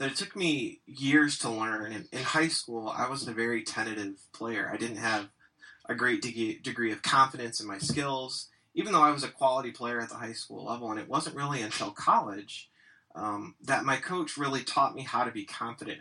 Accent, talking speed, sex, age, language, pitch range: American, 215 wpm, male, 20-39, English, 110-135 Hz